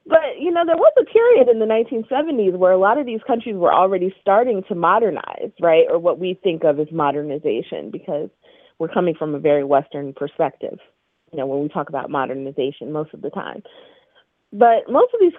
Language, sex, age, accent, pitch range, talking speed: English, female, 30-49, American, 190-255 Hz, 205 wpm